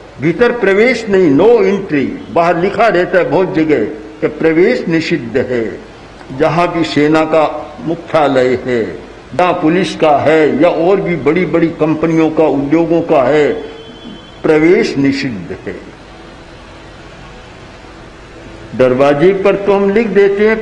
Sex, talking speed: male, 135 wpm